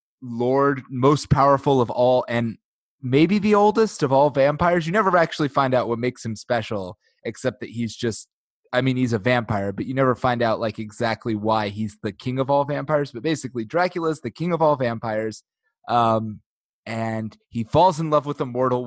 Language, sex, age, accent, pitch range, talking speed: English, male, 20-39, American, 115-150 Hz, 195 wpm